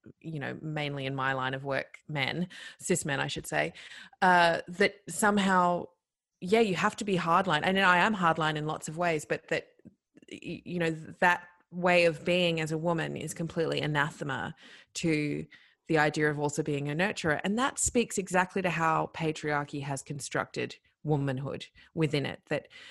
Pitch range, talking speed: 150-180 Hz, 175 wpm